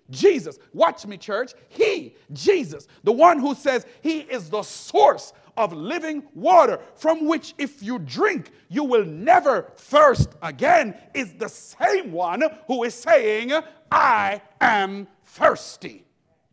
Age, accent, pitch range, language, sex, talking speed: 40-59, American, 230-345 Hz, English, male, 135 wpm